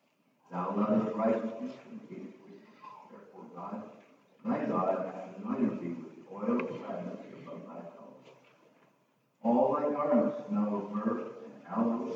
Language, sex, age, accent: English, male, 60-79, American